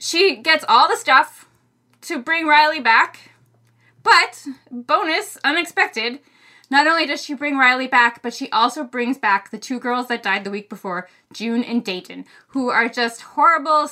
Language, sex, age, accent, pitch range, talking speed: English, female, 20-39, American, 220-300 Hz, 170 wpm